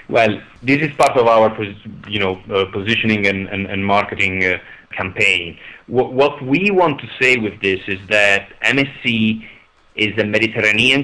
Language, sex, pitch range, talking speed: English, male, 100-115 Hz, 165 wpm